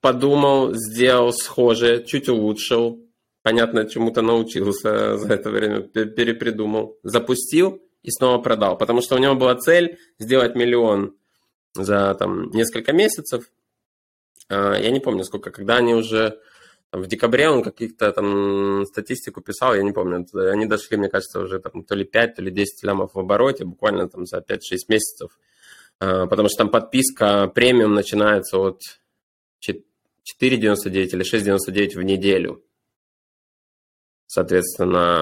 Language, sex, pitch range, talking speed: Ukrainian, male, 100-120 Hz, 135 wpm